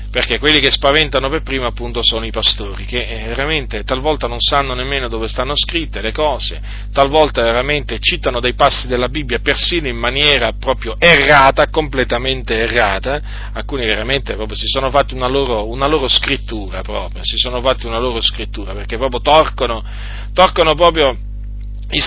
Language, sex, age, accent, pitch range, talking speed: Italian, male, 40-59, native, 110-145 Hz, 135 wpm